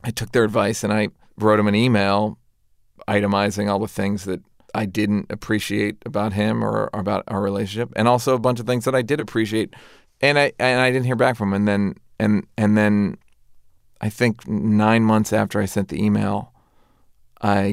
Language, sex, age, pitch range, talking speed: English, male, 40-59, 100-115 Hz, 195 wpm